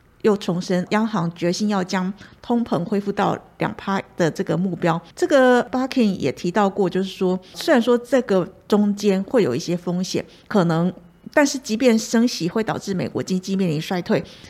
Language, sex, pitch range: Chinese, female, 175-215 Hz